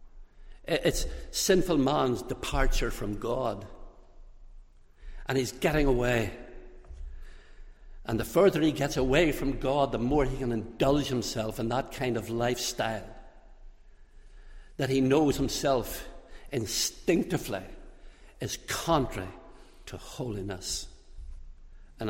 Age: 60-79